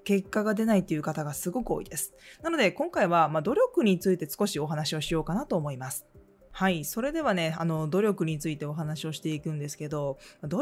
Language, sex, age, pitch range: Japanese, female, 20-39, 155-205 Hz